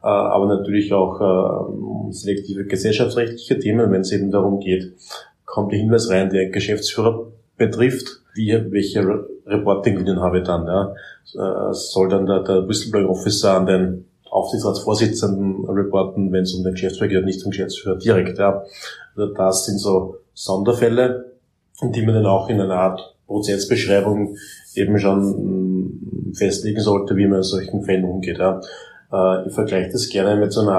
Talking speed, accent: 155 wpm, German